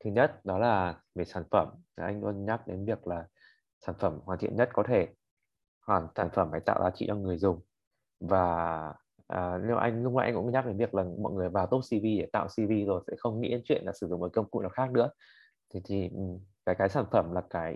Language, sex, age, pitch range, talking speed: Vietnamese, male, 20-39, 95-125 Hz, 245 wpm